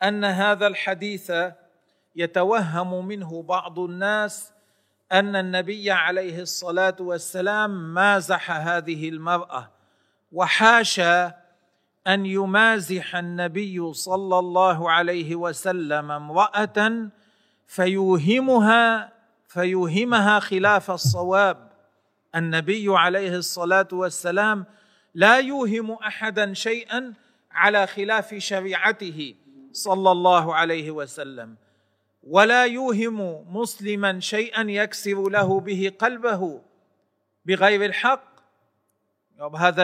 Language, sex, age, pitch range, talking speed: Arabic, male, 40-59, 175-210 Hz, 80 wpm